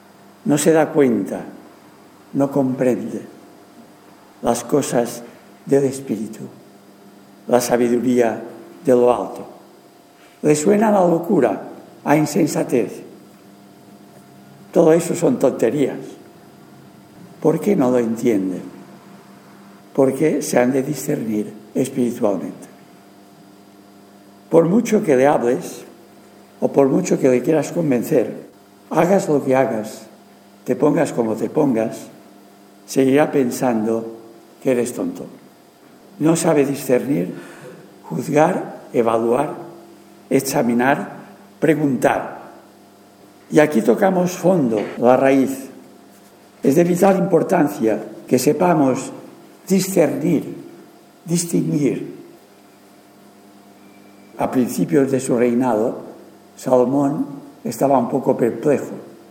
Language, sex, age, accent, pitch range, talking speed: English, male, 60-79, Spanish, 100-150 Hz, 95 wpm